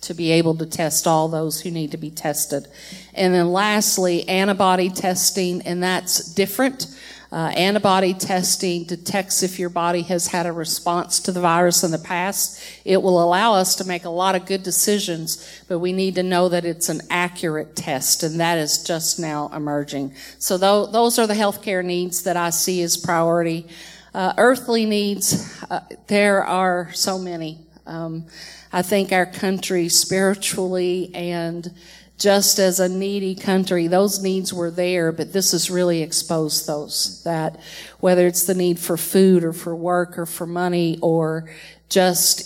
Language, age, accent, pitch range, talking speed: English, 50-69, American, 165-190 Hz, 170 wpm